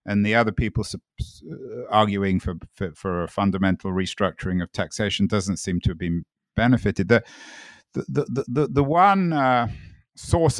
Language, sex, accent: English, male, British